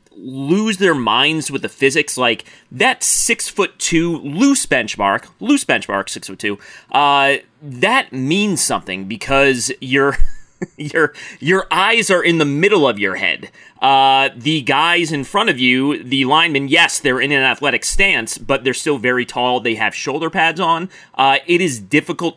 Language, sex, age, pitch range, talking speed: English, male, 30-49, 115-150 Hz, 170 wpm